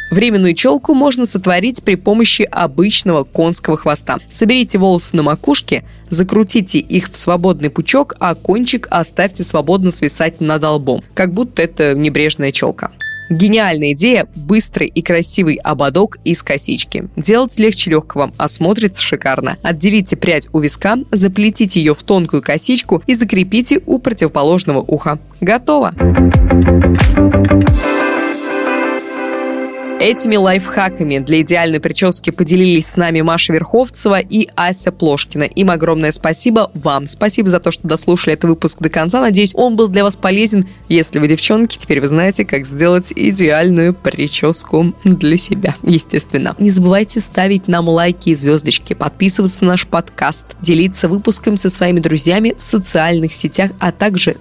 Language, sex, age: Russian, female, 20-39